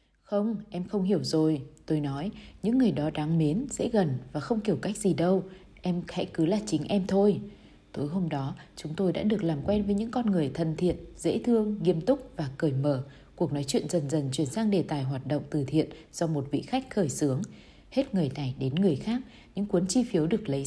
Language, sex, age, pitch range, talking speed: Vietnamese, female, 20-39, 155-205 Hz, 230 wpm